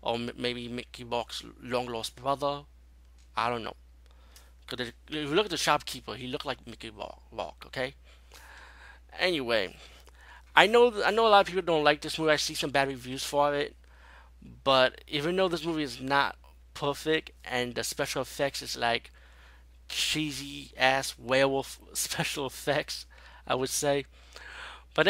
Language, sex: English, male